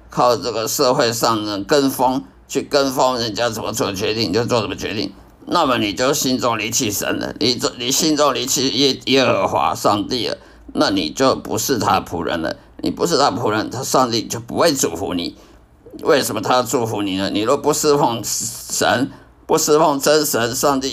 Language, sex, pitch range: Chinese, male, 105-145 Hz